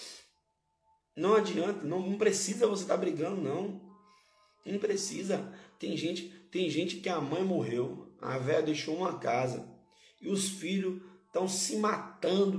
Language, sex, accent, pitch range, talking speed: Portuguese, male, Brazilian, 165-205 Hz, 150 wpm